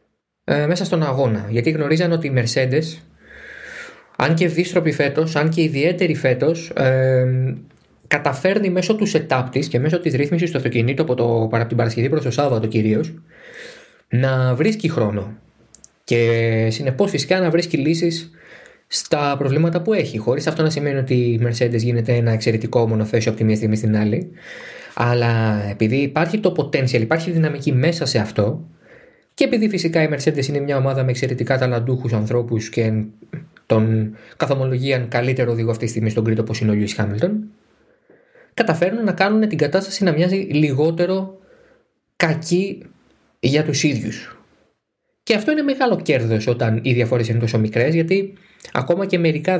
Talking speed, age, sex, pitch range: 160 wpm, 20-39, male, 120-175 Hz